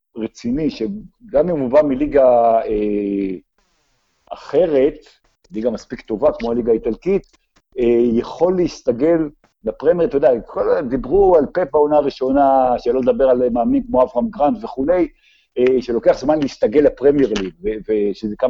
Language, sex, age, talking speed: Hebrew, male, 50-69, 145 wpm